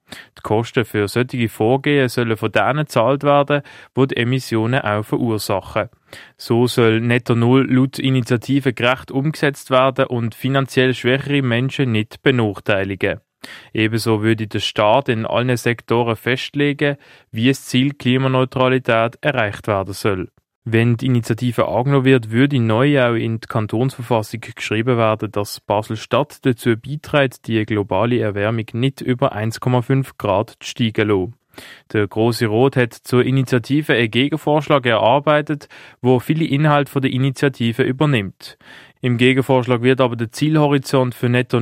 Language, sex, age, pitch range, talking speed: German, male, 20-39, 115-135 Hz, 140 wpm